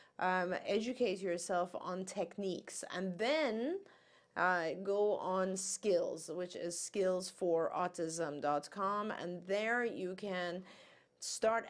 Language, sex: English, female